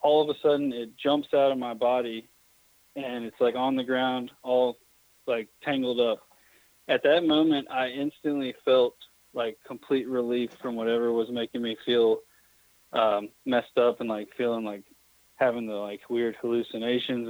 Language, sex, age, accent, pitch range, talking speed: English, male, 20-39, American, 120-140 Hz, 165 wpm